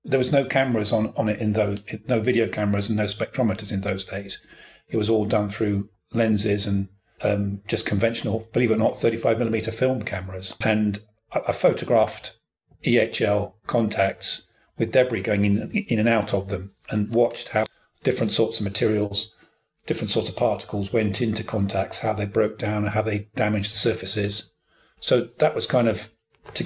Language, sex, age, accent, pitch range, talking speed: English, male, 40-59, British, 100-115 Hz, 180 wpm